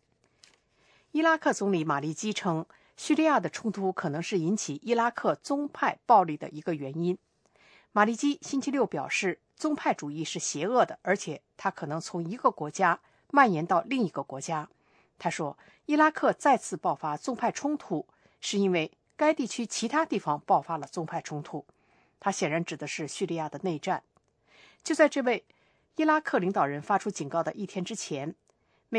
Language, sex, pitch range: English, female, 160-250 Hz